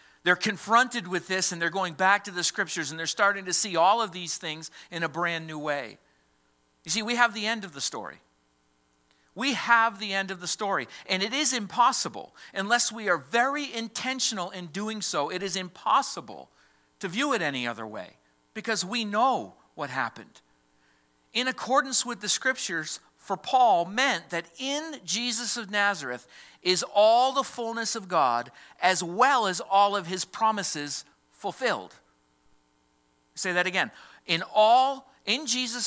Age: 50-69